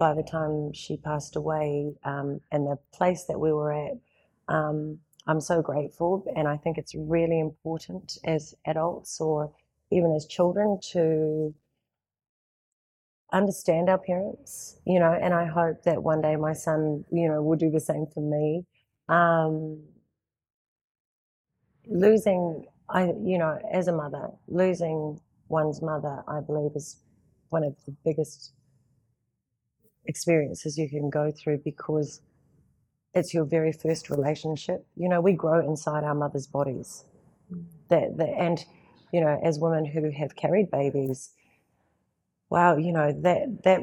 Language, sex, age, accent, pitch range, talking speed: English, female, 30-49, Australian, 150-165 Hz, 145 wpm